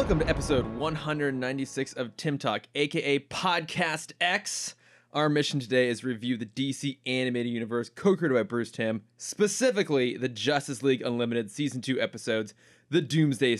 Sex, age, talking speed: male, 20-39, 155 wpm